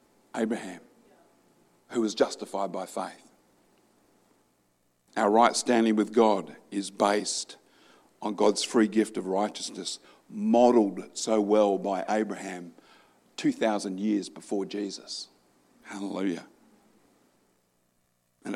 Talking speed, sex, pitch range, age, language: 95 wpm, male, 100-120 Hz, 50-69, English